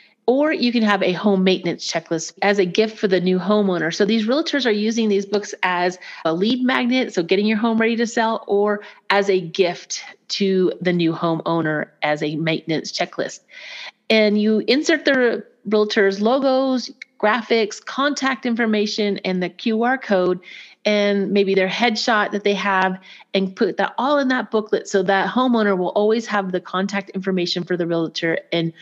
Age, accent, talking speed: 30-49, American, 175 wpm